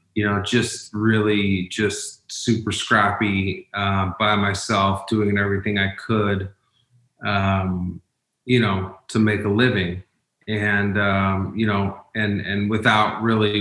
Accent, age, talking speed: American, 30-49, 130 wpm